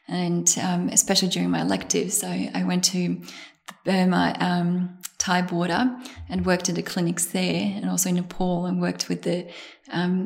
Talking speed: 175 wpm